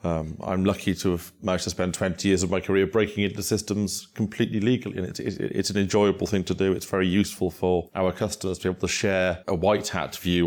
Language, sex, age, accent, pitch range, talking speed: English, male, 30-49, British, 85-95 Hz, 230 wpm